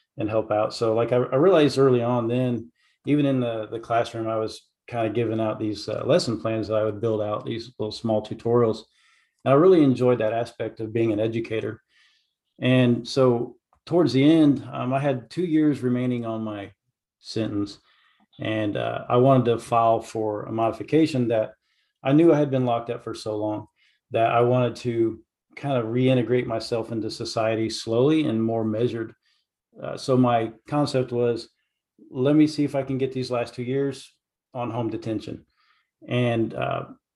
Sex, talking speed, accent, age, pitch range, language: male, 180 wpm, American, 40-59, 110-130 Hz, English